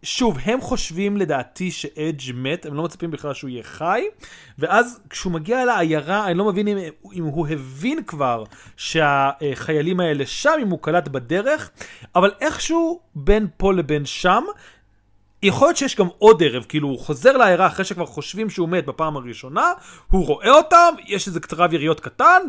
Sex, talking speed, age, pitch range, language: male, 170 wpm, 30-49, 150-215 Hz, Hebrew